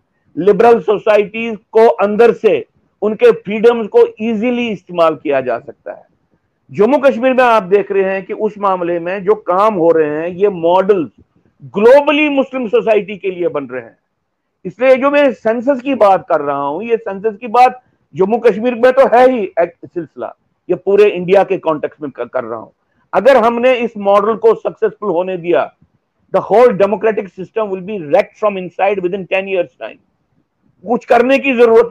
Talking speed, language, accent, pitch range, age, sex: 120 wpm, English, Indian, 185-245 Hz, 50-69, male